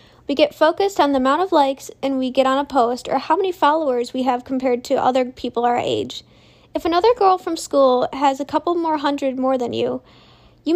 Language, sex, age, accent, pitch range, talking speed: English, female, 10-29, American, 255-315 Hz, 225 wpm